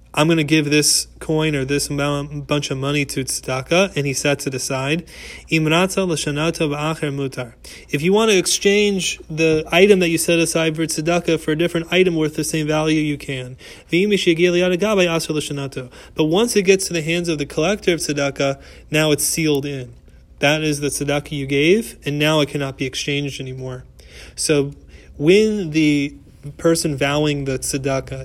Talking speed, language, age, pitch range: 165 wpm, English, 30-49, 135-160 Hz